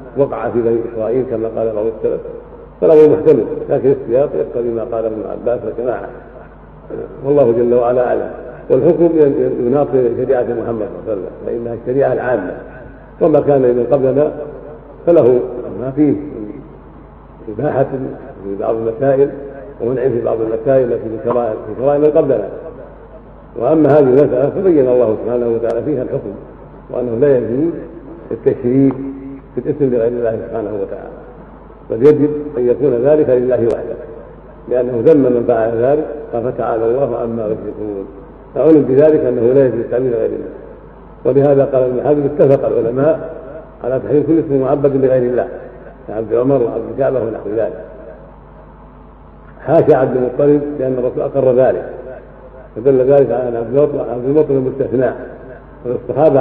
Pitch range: 120-150 Hz